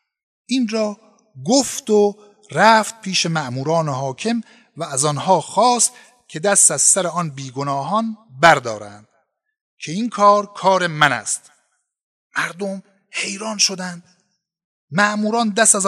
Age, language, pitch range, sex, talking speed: 50-69, Persian, 160-210 Hz, male, 115 wpm